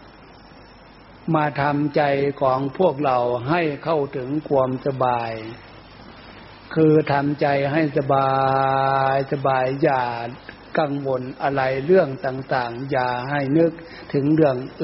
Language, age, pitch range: Thai, 60-79, 130-155 Hz